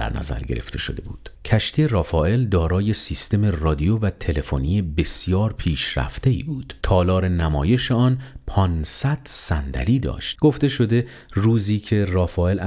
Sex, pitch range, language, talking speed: male, 80-110 Hz, Persian, 135 wpm